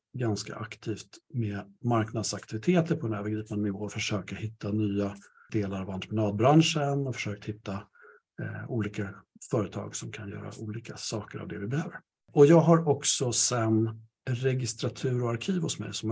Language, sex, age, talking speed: Swedish, male, 60-79, 155 wpm